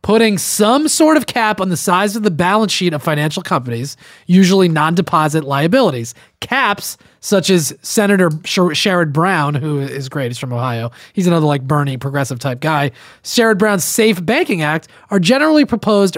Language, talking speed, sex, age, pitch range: English, 170 wpm, male, 30-49, 150-200 Hz